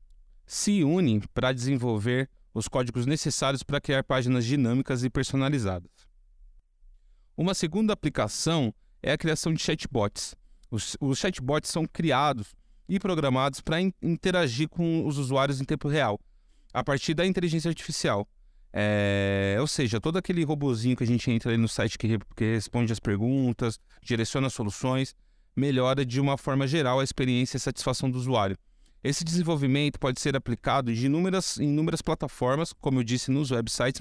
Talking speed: 155 wpm